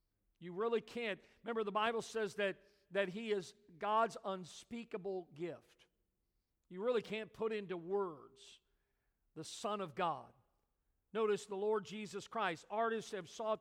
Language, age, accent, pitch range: English, 50-69, American, 195-250 Hz